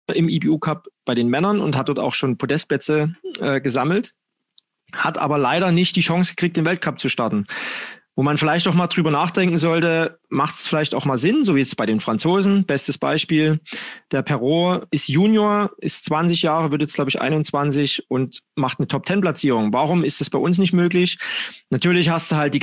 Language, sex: German, male